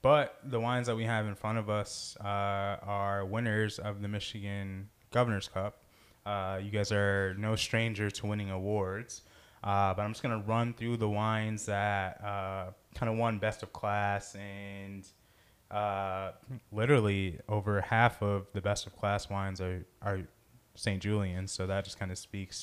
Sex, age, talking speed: male, 20-39, 170 wpm